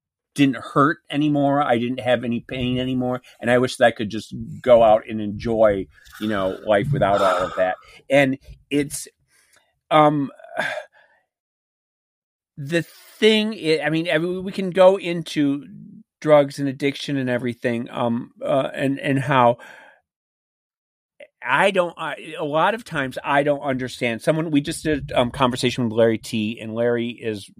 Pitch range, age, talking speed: 115-145 Hz, 40-59, 160 wpm